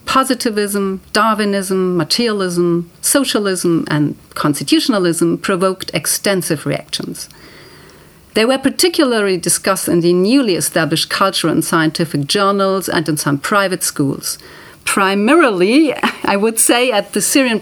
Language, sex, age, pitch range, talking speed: English, female, 40-59, 160-220 Hz, 110 wpm